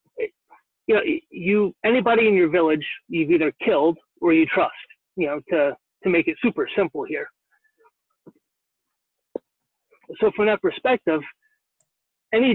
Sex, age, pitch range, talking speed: male, 30-49, 160-230 Hz, 125 wpm